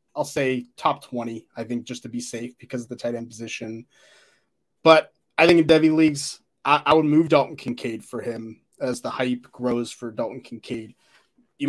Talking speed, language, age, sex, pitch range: 195 wpm, English, 20-39, male, 125-170 Hz